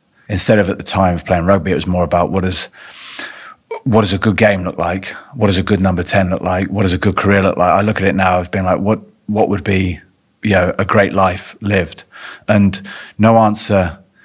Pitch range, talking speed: 90-100 Hz, 235 wpm